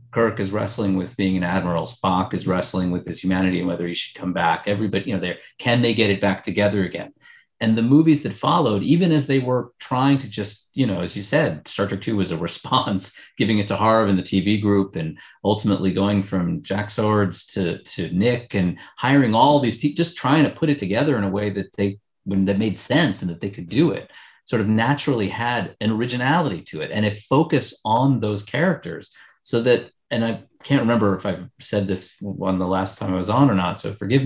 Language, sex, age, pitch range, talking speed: English, male, 30-49, 95-125 Hz, 230 wpm